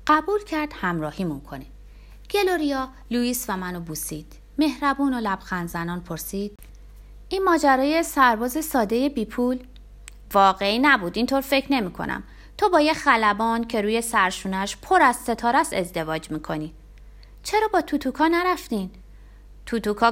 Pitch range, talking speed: 185-285 Hz, 115 wpm